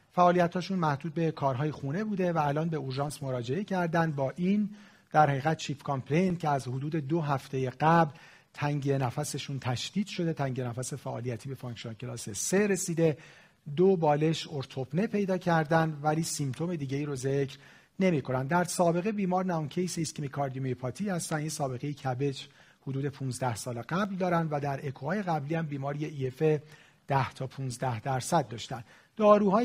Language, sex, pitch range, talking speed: Persian, male, 135-170 Hz, 160 wpm